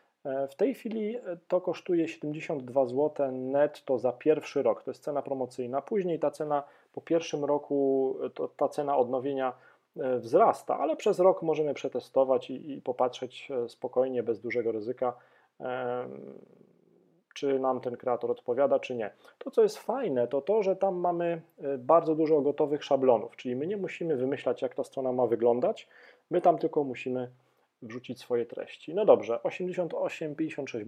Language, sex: Polish, male